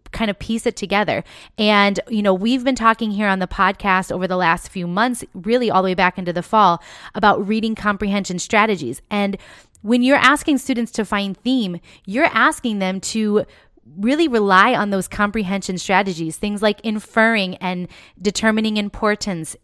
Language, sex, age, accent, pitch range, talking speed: English, female, 20-39, American, 190-235 Hz, 170 wpm